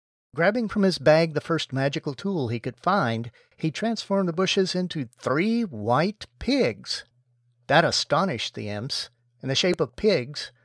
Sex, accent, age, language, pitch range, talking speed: male, American, 50-69, English, 120-185 Hz, 160 wpm